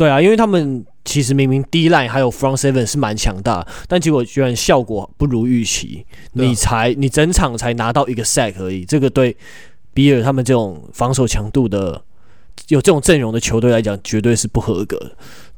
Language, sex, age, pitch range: Chinese, male, 20-39, 110-140 Hz